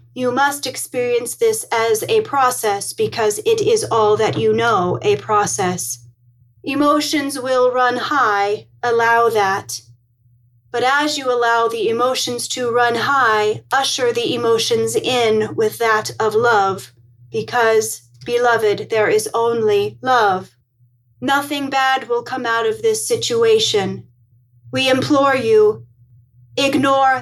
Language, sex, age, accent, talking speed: English, female, 30-49, American, 125 wpm